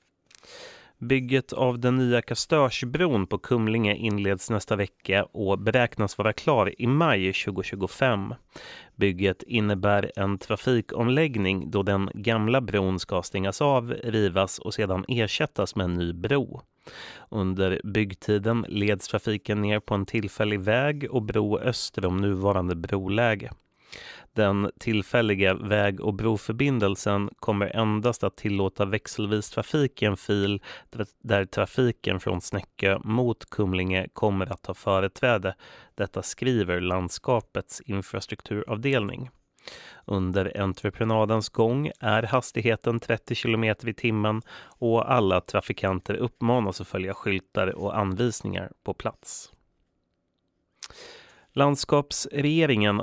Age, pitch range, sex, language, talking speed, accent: 30-49, 95-115 Hz, male, Swedish, 110 wpm, native